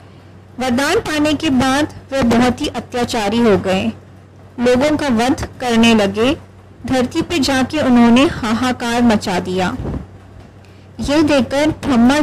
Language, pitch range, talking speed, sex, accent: Hindi, 215-275 Hz, 125 wpm, female, native